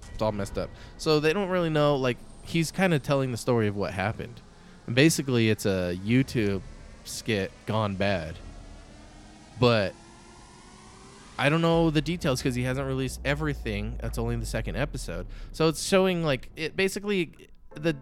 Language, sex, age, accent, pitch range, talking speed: English, male, 20-39, American, 110-140 Hz, 165 wpm